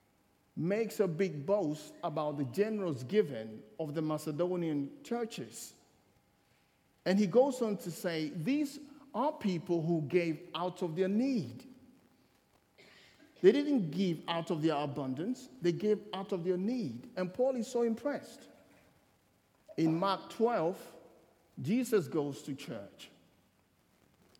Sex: male